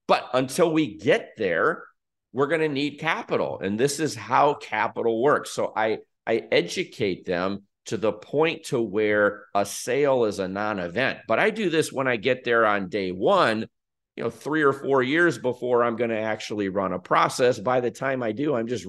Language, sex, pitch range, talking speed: English, male, 110-155 Hz, 200 wpm